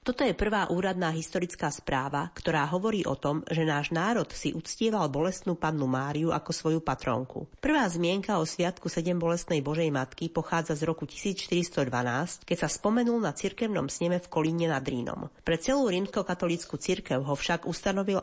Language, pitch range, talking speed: Slovak, 155-190 Hz, 160 wpm